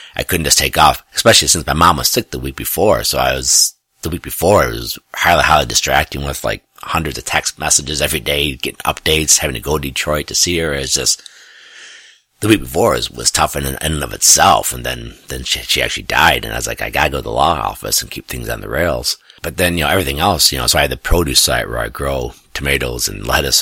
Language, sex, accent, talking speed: English, male, American, 255 wpm